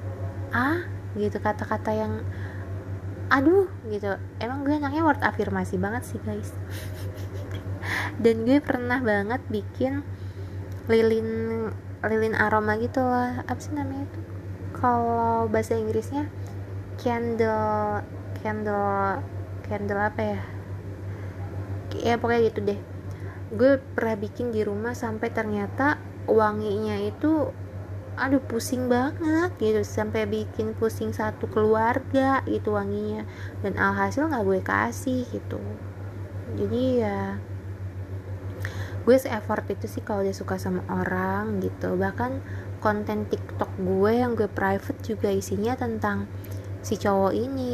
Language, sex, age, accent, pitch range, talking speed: Indonesian, female, 20-39, native, 95-115 Hz, 115 wpm